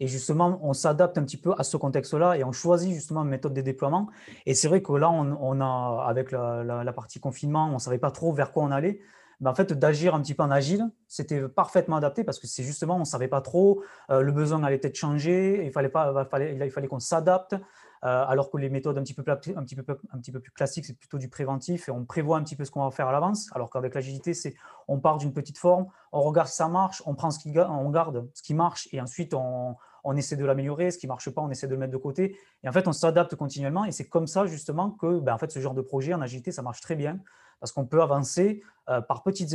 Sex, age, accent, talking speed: male, 20-39, French, 265 wpm